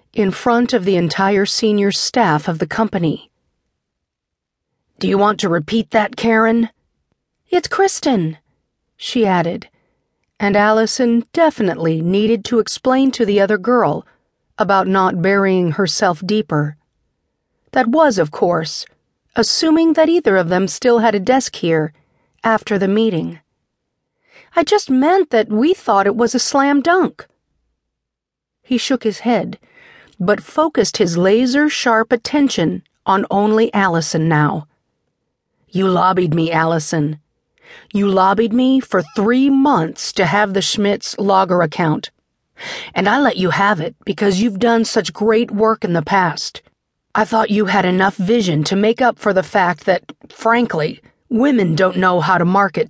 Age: 40-59